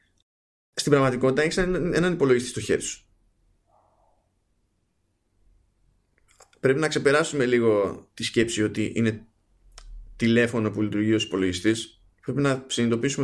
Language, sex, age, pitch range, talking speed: Greek, male, 20-39, 100-135 Hz, 110 wpm